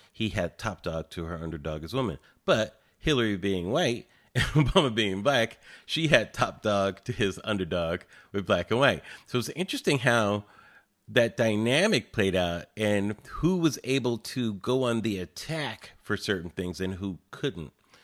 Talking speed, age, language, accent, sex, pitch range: 170 wpm, 40-59, English, American, male, 85-130 Hz